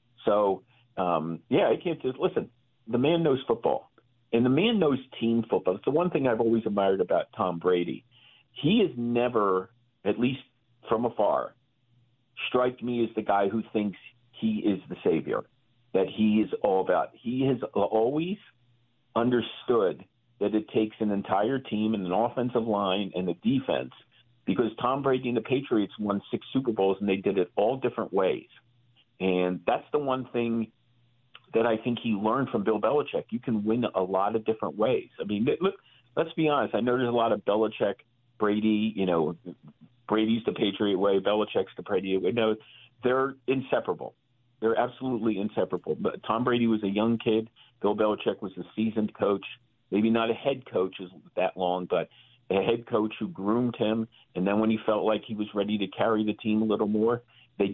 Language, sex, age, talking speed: English, male, 50-69, 185 wpm